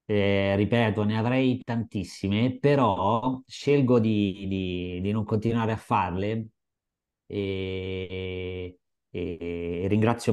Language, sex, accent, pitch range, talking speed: Italian, male, native, 95-120 Hz, 100 wpm